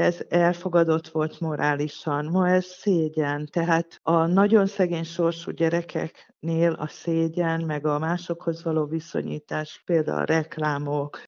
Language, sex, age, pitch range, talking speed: Hungarian, female, 50-69, 160-195 Hz, 120 wpm